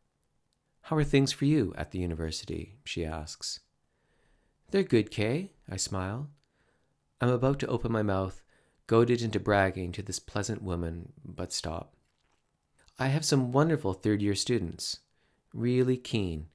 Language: English